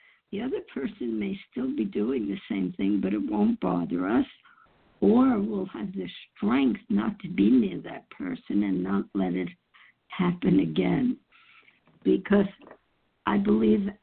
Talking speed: 150 wpm